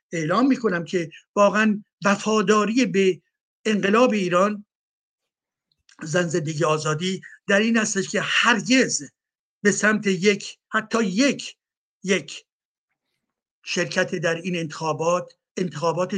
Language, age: Persian, 60-79